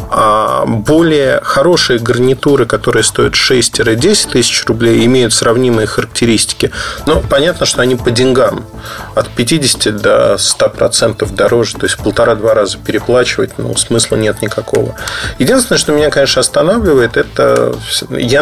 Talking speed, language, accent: 125 wpm, Russian, native